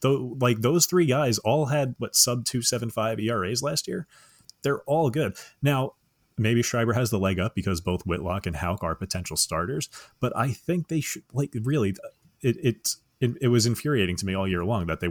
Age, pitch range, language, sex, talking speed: 30-49, 90-120 Hz, English, male, 210 wpm